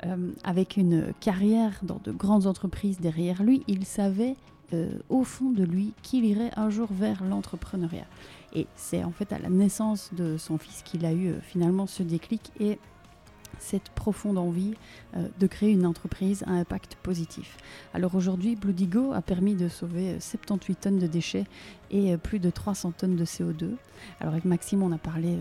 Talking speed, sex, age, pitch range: 175 wpm, female, 30-49, 170-200 Hz